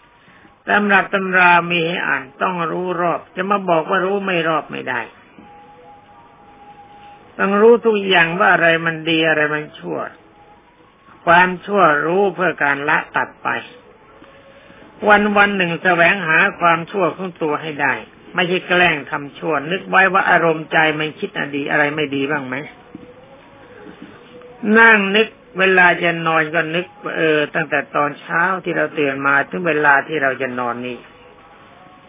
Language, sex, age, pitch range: Thai, male, 60-79, 155-195 Hz